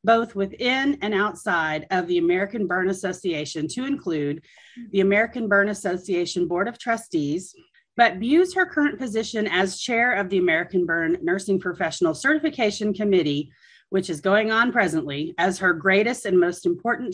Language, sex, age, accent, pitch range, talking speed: English, female, 40-59, American, 175-235 Hz, 155 wpm